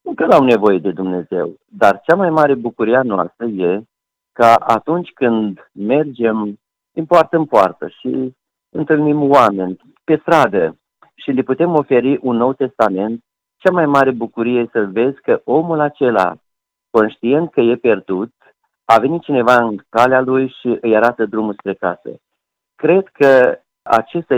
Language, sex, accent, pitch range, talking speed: Romanian, male, native, 105-140 Hz, 155 wpm